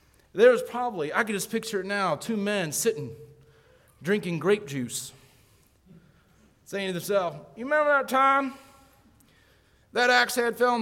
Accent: American